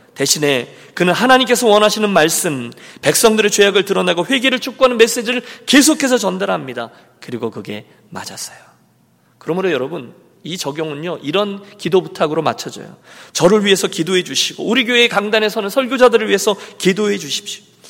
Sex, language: male, Korean